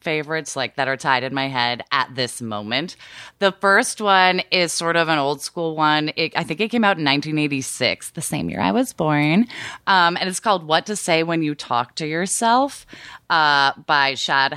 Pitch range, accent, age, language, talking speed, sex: 125-155 Hz, American, 20-39, English, 200 wpm, female